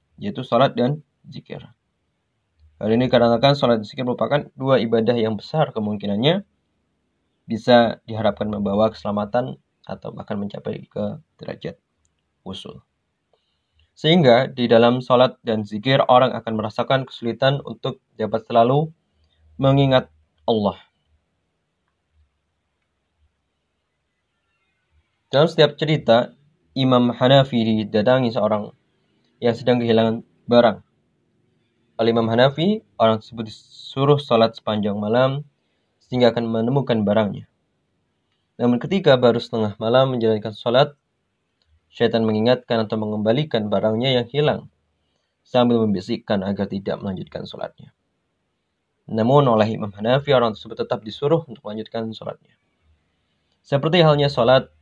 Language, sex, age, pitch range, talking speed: Indonesian, male, 20-39, 105-130 Hz, 105 wpm